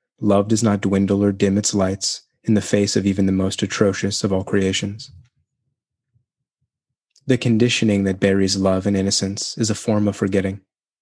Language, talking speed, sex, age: English, 170 wpm, male, 30-49